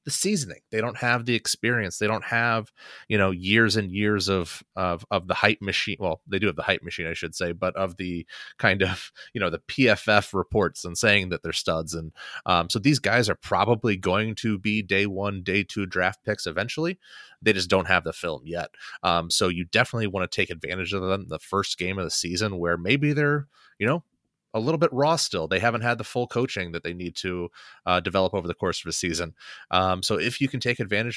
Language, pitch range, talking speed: English, 90-115 Hz, 235 wpm